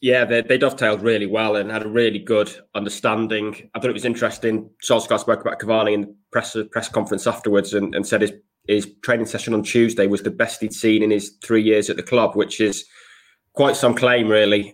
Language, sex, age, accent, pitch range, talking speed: English, male, 20-39, British, 105-120 Hz, 220 wpm